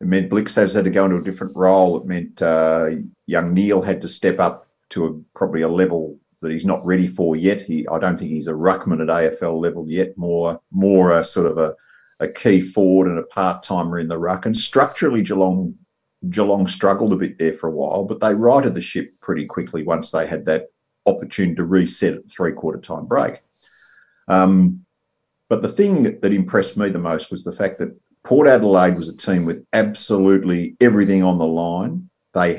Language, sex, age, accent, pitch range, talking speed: English, male, 50-69, Australian, 85-100 Hz, 205 wpm